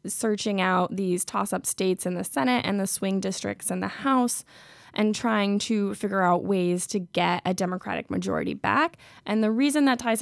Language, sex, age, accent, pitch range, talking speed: English, female, 10-29, American, 185-225 Hz, 190 wpm